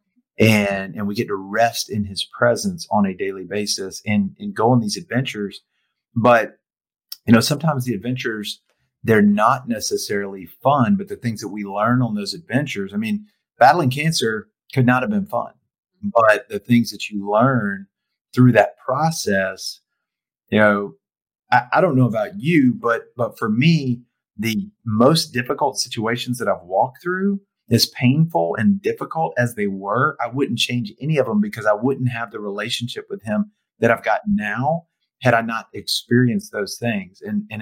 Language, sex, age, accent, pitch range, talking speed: English, male, 40-59, American, 110-185 Hz, 175 wpm